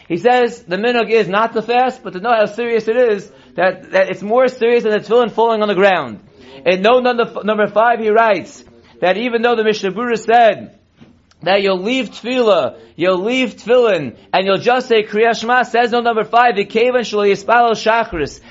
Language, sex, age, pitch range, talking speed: English, male, 30-49, 205-235 Hz, 200 wpm